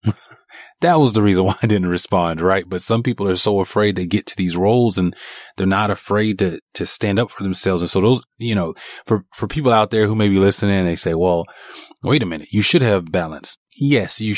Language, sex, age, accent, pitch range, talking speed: English, male, 30-49, American, 90-110 Hz, 240 wpm